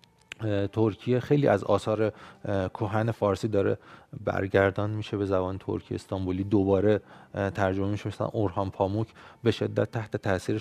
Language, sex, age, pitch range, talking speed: Persian, male, 30-49, 95-120 Hz, 130 wpm